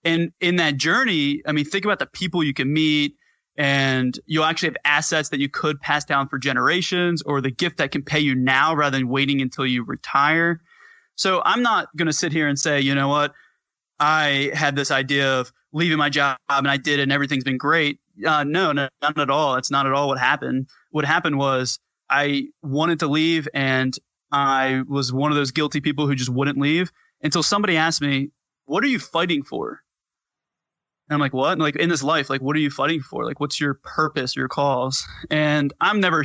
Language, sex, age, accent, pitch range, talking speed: English, male, 20-39, American, 140-155 Hz, 215 wpm